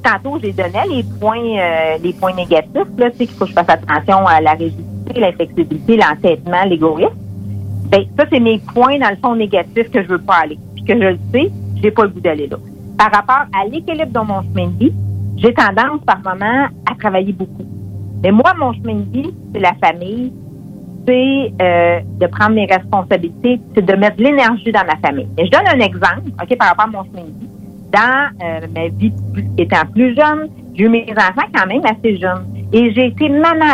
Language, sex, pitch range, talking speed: English, female, 140-235 Hz, 215 wpm